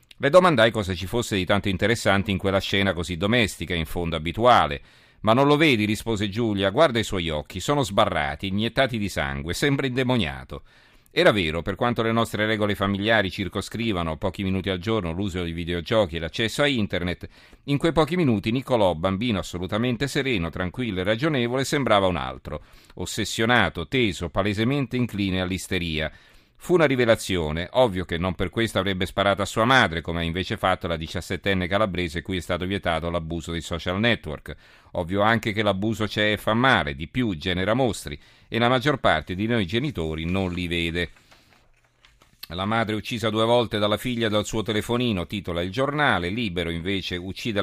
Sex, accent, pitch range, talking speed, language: male, native, 90-115 Hz, 175 wpm, Italian